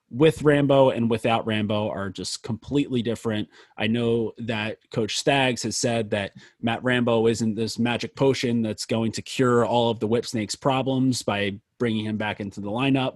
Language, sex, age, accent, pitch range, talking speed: English, male, 30-49, American, 105-125 Hz, 180 wpm